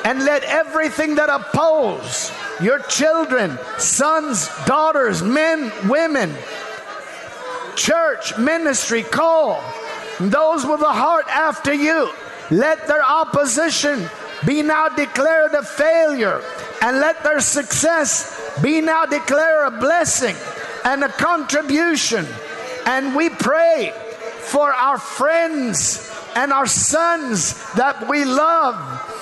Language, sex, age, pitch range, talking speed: English, male, 50-69, 260-320 Hz, 105 wpm